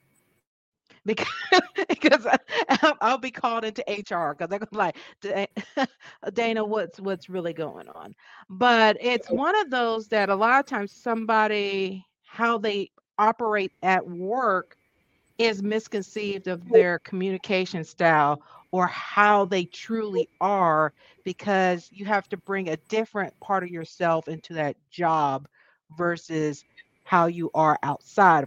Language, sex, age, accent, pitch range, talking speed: English, female, 50-69, American, 170-220 Hz, 130 wpm